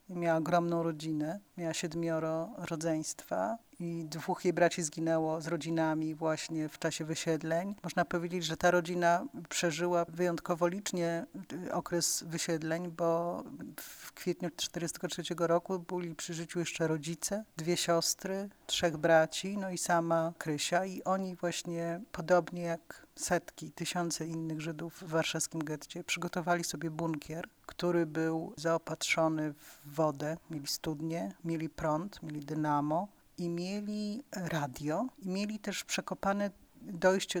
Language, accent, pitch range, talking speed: Polish, native, 160-180 Hz, 125 wpm